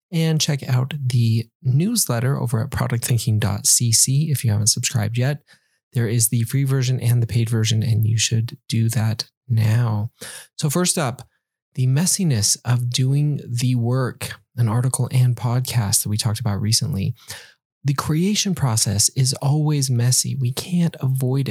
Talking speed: 155 wpm